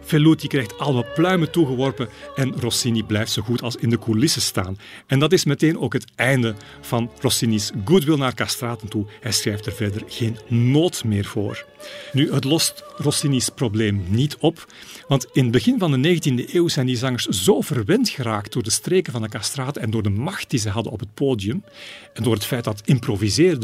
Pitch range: 110-150 Hz